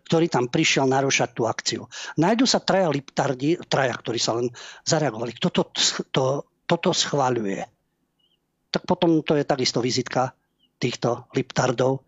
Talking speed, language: 140 wpm, Slovak